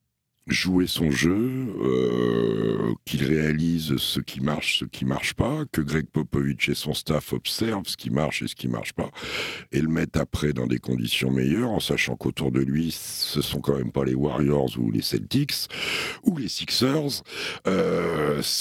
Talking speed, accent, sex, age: 175 wpm, French, male, 60-79